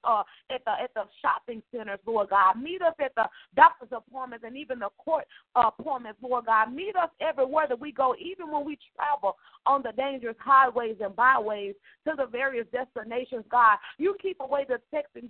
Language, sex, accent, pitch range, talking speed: English, female, American, 230-300 Hz, 190 wpm